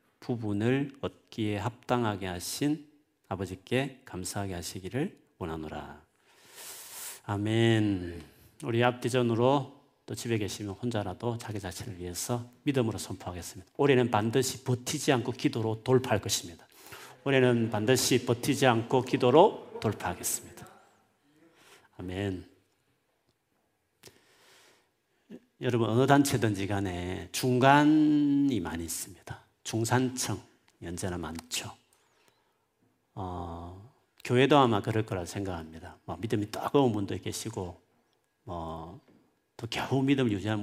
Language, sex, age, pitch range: Korean, male, 40-59, 100-130 Hz